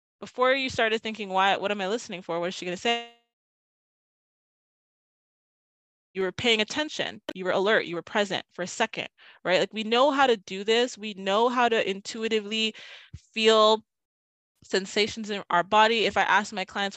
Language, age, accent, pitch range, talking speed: English, 20-39, American, 185-230 Hz, 185 wpm